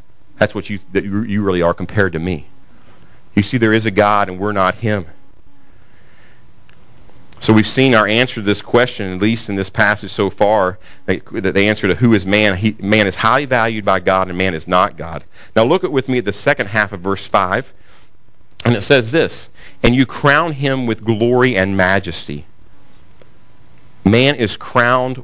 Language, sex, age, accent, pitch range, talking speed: English, male, 40-59, American, 95-120 Hz, 195 wpm